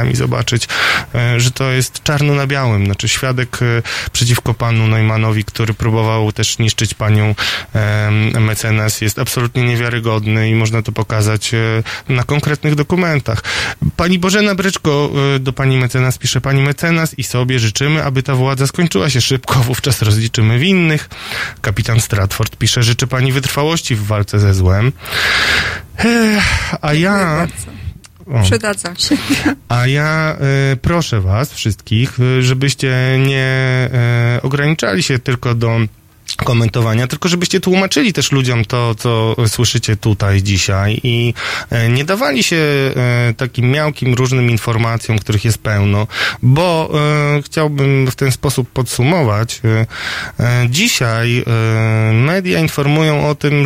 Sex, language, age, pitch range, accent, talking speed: male, Polish, 30-49, 110-140 Hz, native, 120 wpm